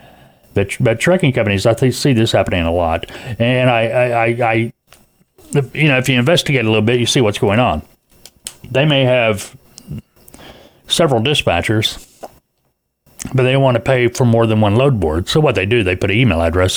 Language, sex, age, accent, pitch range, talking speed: English, male, 40-59, American, 95-125 Hz, 195 wpm